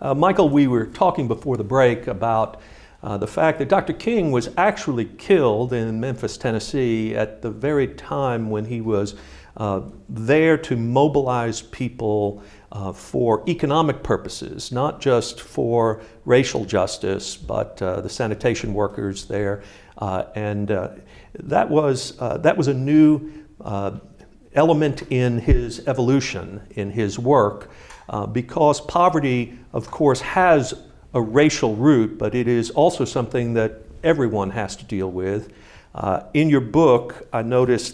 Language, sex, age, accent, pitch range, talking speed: English, male, 60-79, American, 105-145 Hz, 145 wpm